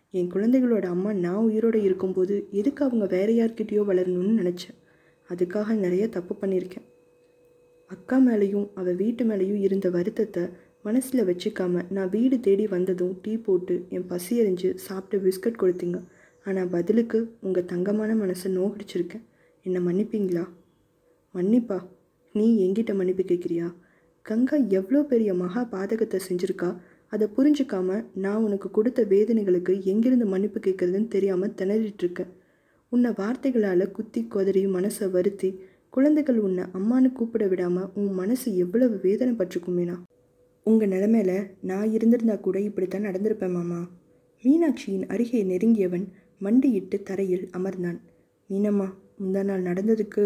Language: Tamil